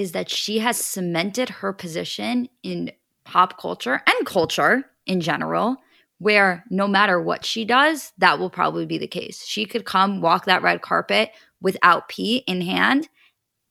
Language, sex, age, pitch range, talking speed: English, female, 20-39, 185-235 Hz, 160 wpm